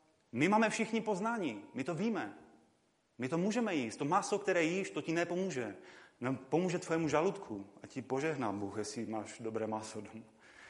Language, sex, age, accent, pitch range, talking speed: Czech, male, 30-49, native, 130-175 Hz, 170 wpm